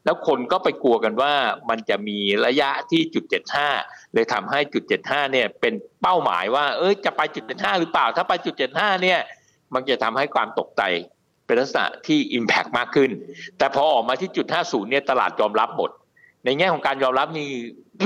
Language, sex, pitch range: Thai, male, 130-180 Hz